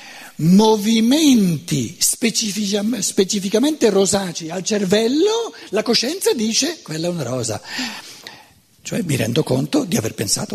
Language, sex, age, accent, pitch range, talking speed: Italian, male, 60-79, native, 170-240 Hz, 110 wpm